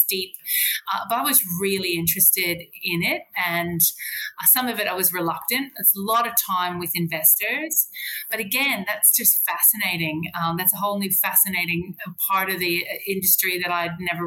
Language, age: English, 30-49